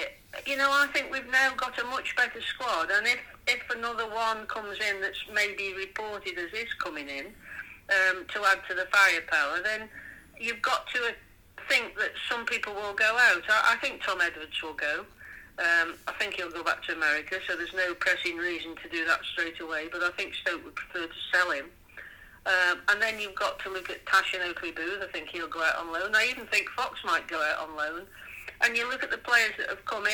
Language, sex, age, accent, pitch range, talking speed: English, female, 40-59, British, 190-255 Hz, 225 wpm